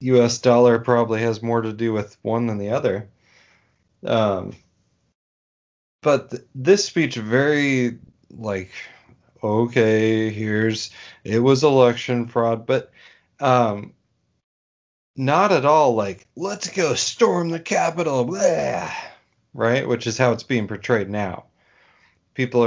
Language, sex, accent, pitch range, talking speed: English, male, American, 110-130 Hz, 120 wpm